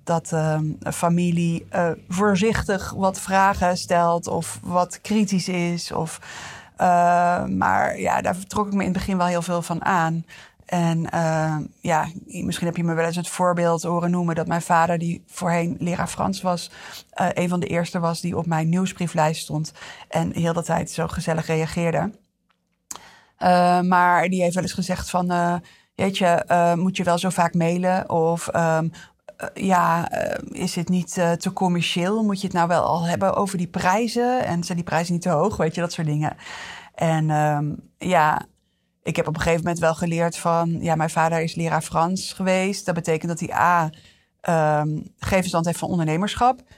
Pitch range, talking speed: 165-185 Hz, 185 wpm